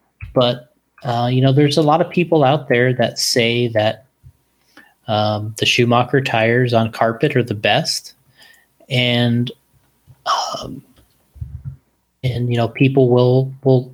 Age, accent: 30-49, American